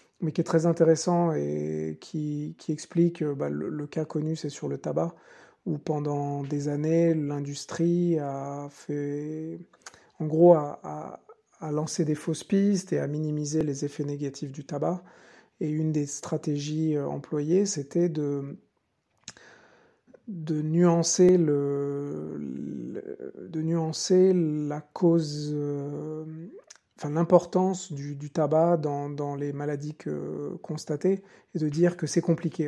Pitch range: 145-170 Hz